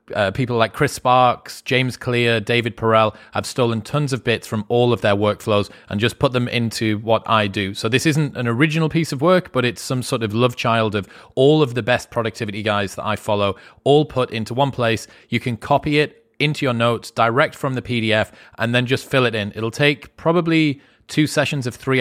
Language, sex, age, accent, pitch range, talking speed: English, male, 30-49, British, 110-130 Hz, 220 wpm